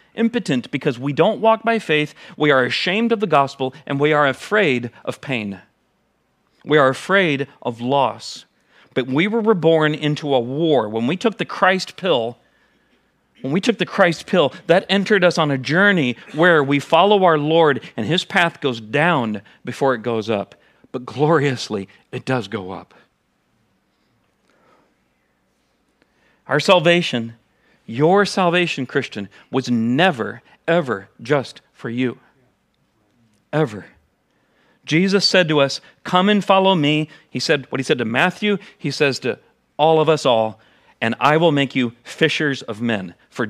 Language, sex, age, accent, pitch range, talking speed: English, male, 40-59, American, 120-175 Hz, 155 wpm